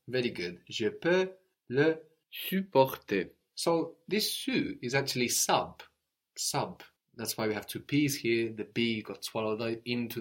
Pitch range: 110-135 Hz